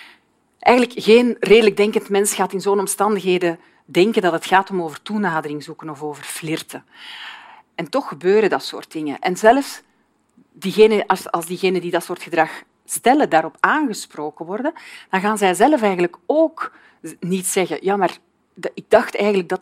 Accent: Dutch